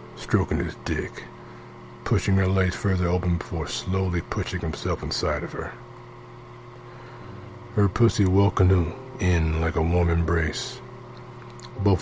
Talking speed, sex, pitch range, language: 125 wpm, male, 80-120 Hz, English